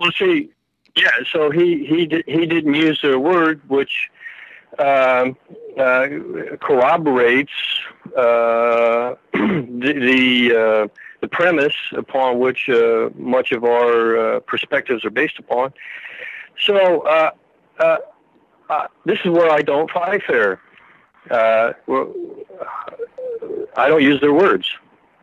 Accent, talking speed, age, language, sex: American, 120 wpm, 60-79, English, male